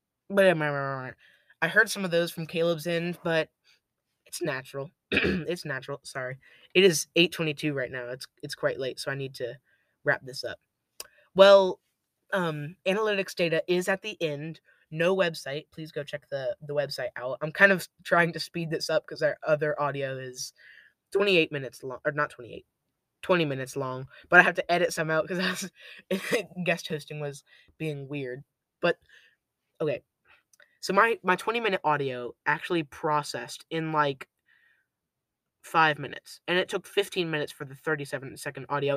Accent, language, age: American, English, 20-39